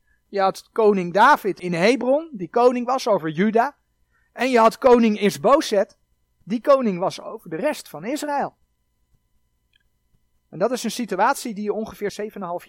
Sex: male